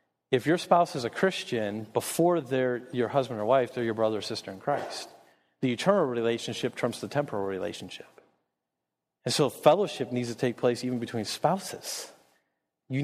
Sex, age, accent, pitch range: male, 40-59, American, 120-160 Hz